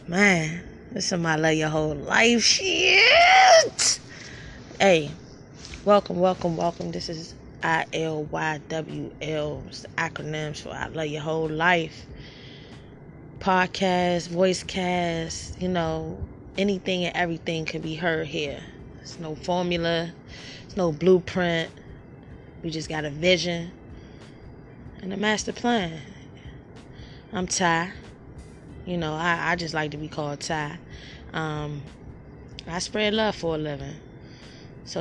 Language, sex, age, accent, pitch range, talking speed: English, female, 20-39, American, 155-185 Hz, 125 wpm